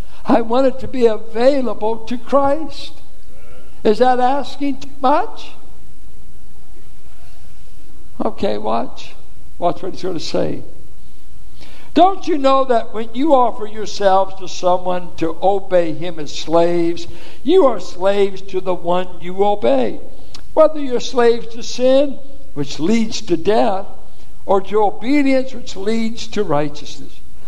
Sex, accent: male, American